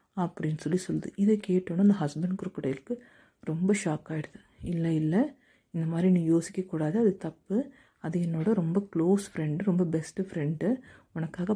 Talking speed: 150 wpm